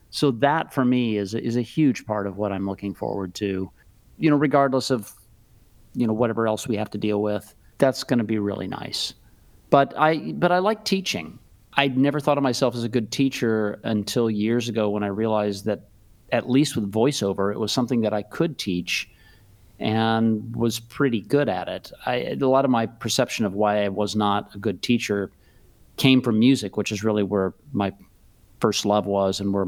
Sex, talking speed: male, 200 wpm